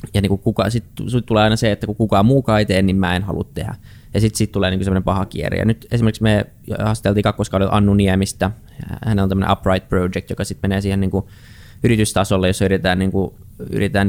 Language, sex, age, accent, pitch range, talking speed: Finnish, male, 20-39, native, 95-110 Hz, 210 wpm